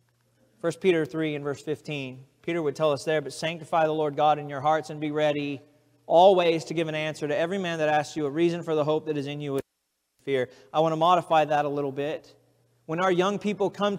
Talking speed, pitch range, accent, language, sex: 245 wpm, 125-160 Hz, American, English, male